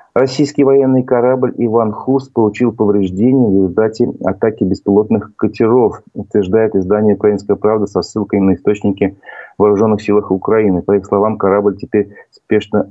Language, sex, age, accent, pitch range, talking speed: Russian, male, 40-59, native, 95-110 Hz, 135 wpm